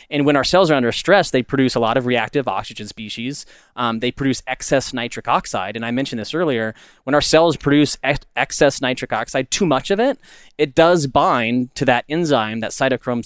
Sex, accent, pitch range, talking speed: male, American, 115-140 Hz, 210 wpm